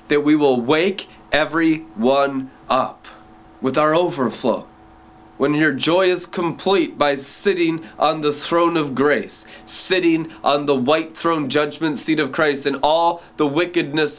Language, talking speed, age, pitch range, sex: English, 145 wpm, 20-39, 130-165 Hz, male